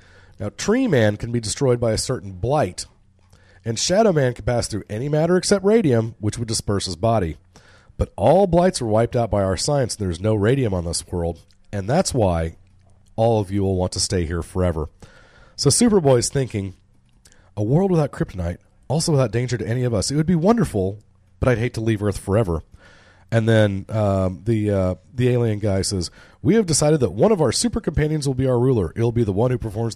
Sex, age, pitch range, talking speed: male, 40-59, 95-130 Hz, 220 wpm